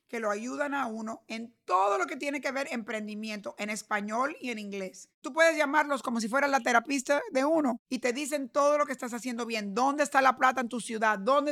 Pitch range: 225-275 Hz